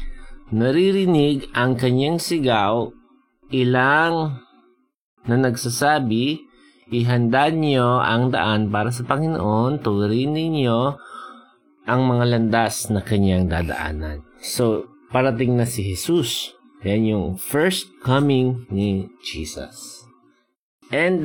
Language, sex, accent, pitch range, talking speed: Filipino, male, native, 110-165 Hz, 95 wpm